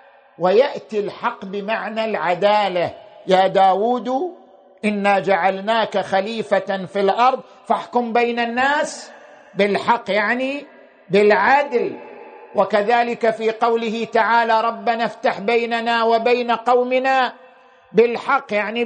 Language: Arabic